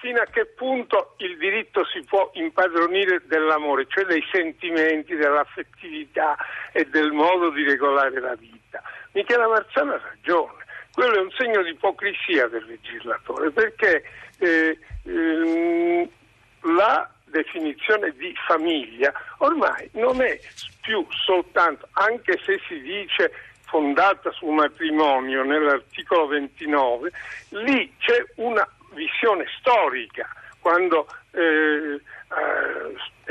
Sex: male